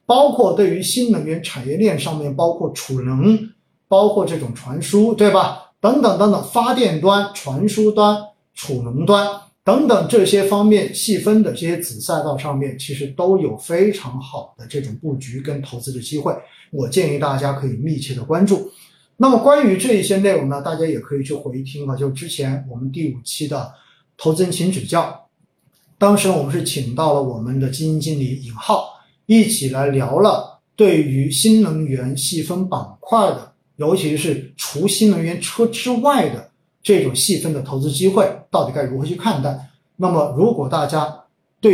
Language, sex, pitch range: Chinese, male, 140-195 Hz